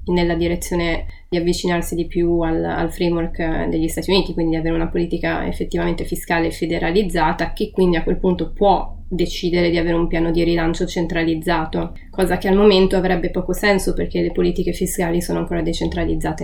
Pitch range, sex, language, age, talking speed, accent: 175-190 Hz, female, Italian, 20-39, 175 wpm, native